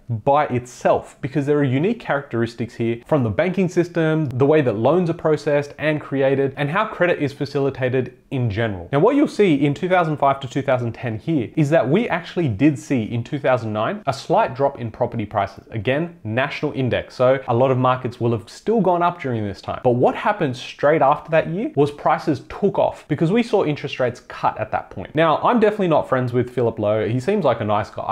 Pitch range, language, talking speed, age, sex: 120-160 Hz, English, 215 wpm, 30-49, male